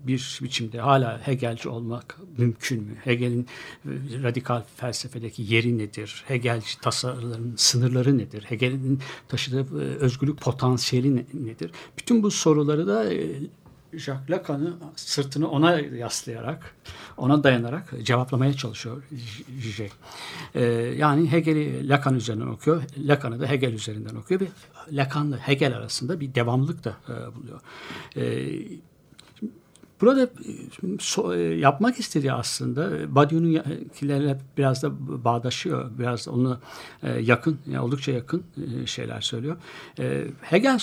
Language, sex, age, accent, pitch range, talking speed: Turkish, male, 60-79, native, 120-150 Hz, 110 wpm